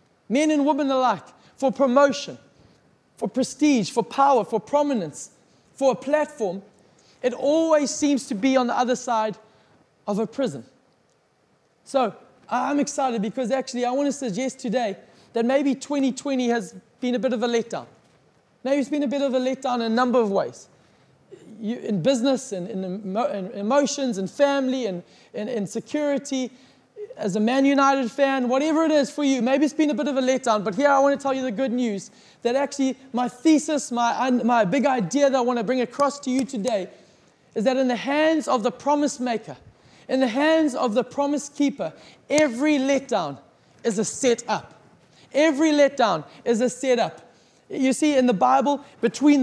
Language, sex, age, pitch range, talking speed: English, male, 20-39, 235-280 Hz, 175 wpm